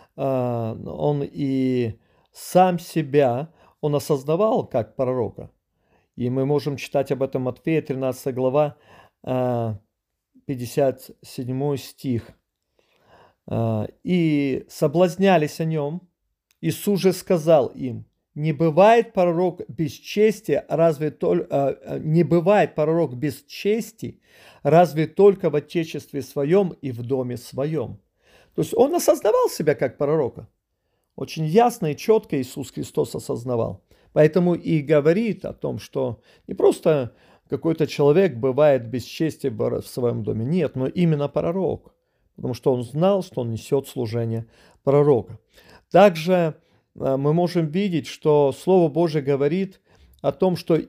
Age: 40-59